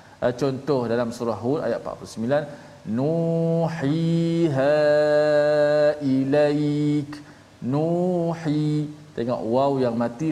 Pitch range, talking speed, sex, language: 125-155 Hz, 80 wpm, male, Malayalam